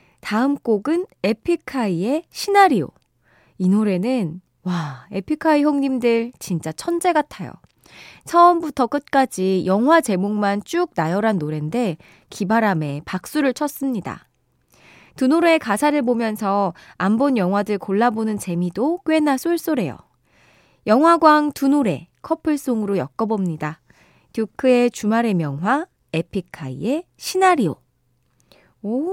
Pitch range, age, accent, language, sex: 185-285 Hz, 20-39, native, Korean, female